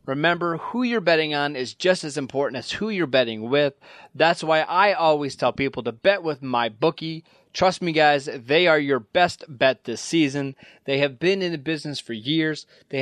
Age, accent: 30-49, American